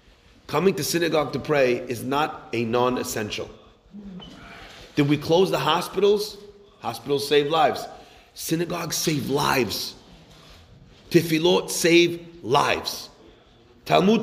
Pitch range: 170-240 Hz